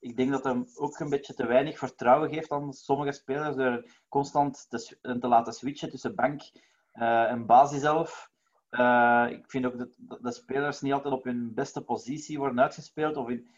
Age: 30-49